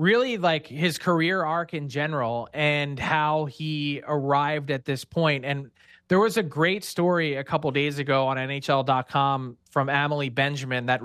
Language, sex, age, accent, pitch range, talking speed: English, male, 30-49, American, 140-170 Hz, 170 wpm